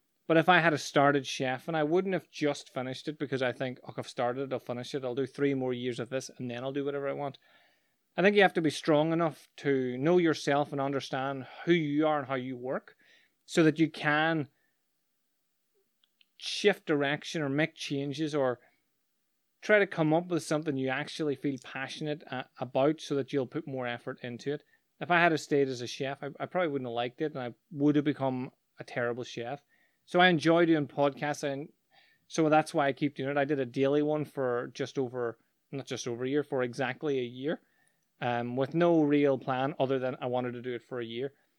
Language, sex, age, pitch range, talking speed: English, male, 30-49, 130-155 Hz, 220 wpm